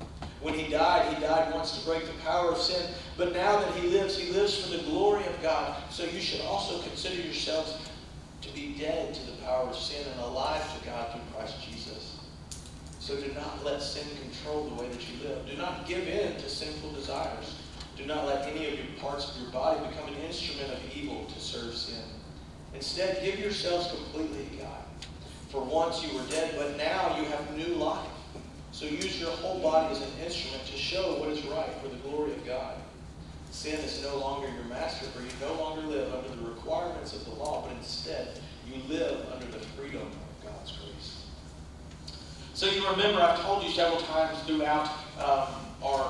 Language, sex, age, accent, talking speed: English, male, 40-59, American, 200 wpm